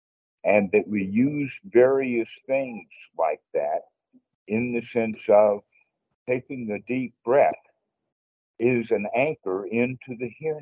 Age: 60-79